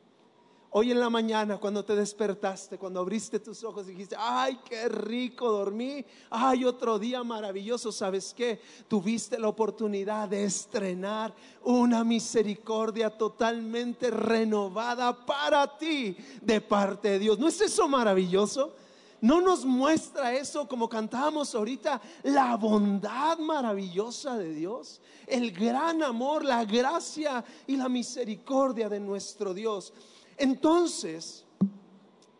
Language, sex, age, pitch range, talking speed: Spanish, male, 40-59, 210-280 Hz, 120 wpm